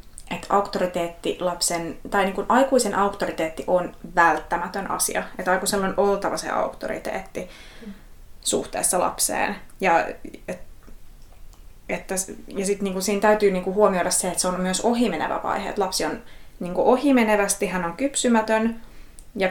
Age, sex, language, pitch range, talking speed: 20-39, female, Finnish, 175-210 Hz, 100 wpm